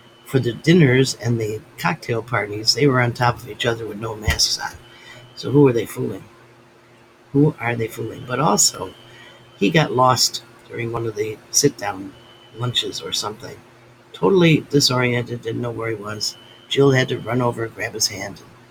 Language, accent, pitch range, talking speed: English, American, 115-125 Hz, 175 wpm